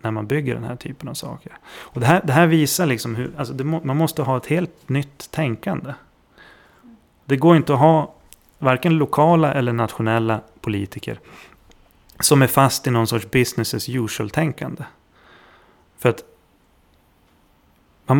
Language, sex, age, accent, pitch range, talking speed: Swedish, male, 30-49, native, 110-140 Hz, 160 wpm